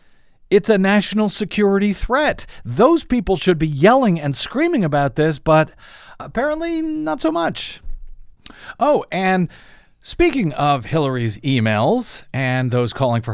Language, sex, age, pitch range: English, male, 50-69, 120-175 Hz